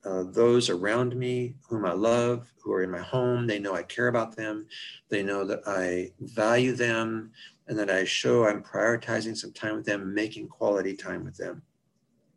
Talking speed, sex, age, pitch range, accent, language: 190 wpm, male, 50-69, 100-125 Hz, American, English